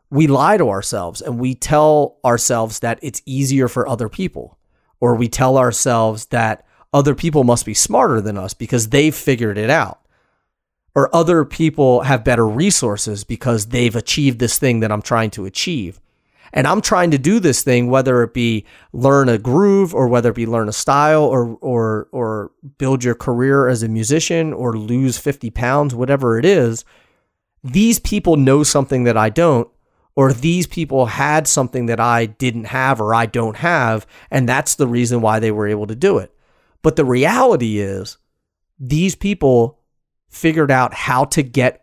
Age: 30-49